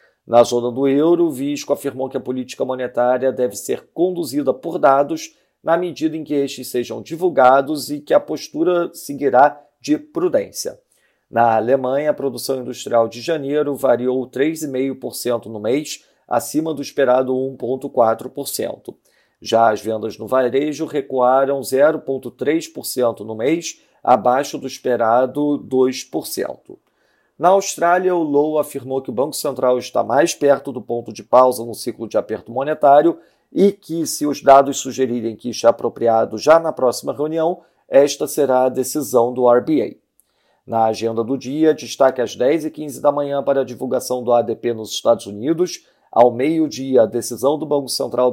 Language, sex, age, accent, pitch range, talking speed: Portuguese, male, 40-59, Brazilian, 120-150 Hz, 155 wpm